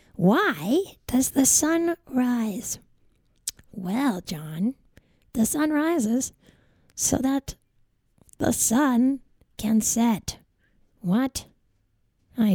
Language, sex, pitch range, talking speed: English, female, 205-275 Hz, 85 wpm